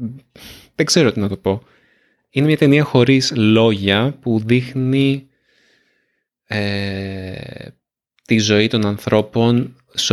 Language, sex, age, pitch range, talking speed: Greek, male, 20-39, 105-125 Hz, 105 wpm